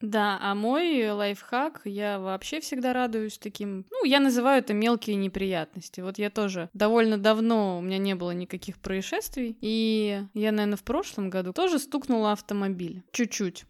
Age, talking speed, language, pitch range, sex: 20-39, 160 wpm, Russian, 190-250 Hz, female